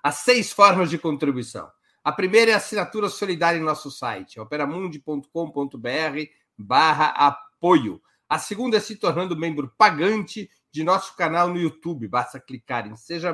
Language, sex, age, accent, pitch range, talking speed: Portuguese, male, 60-79, Brazilian, 140-195 Hz, 150 wpm